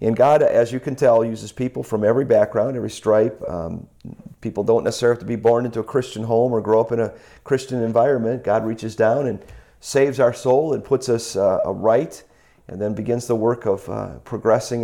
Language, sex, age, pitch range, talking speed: English, male, 40-59, 100-120 Hz, 215 wpm